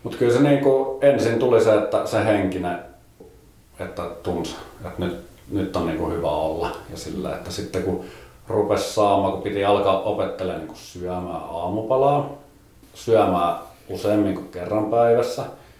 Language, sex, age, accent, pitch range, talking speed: Finnish, male, 30-49, native, 90-115 Hz, 135 wpm